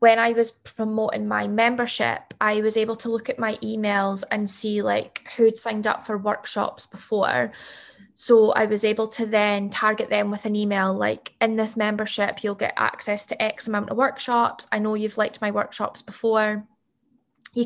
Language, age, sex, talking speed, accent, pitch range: English, 10-29, female, 185 wpm, British, 205-230 Hz